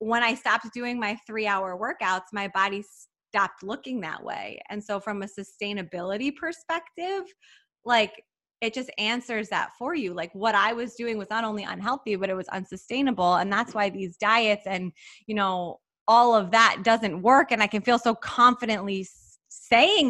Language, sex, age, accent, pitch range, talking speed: English, female, 20-39, American, 195-235 Hz, 180 wpm